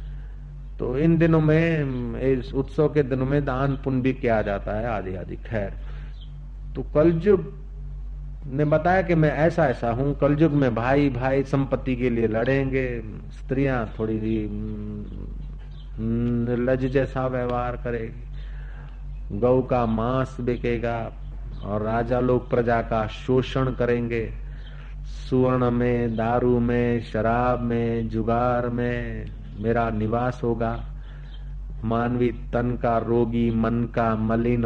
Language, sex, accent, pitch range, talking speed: Hindi, male, native, 120-145 Hz, 120 wpm